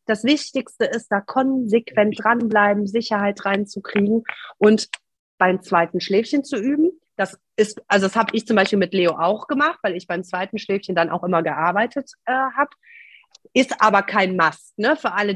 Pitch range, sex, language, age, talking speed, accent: 195-260 Hz, female, German, 30-49, 170 wpm, German